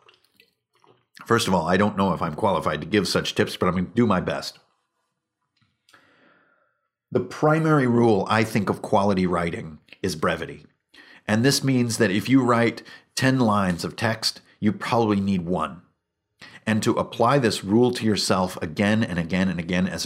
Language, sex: English, male